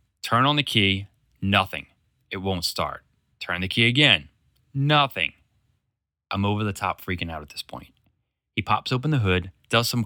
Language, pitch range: English, 90-125 Hz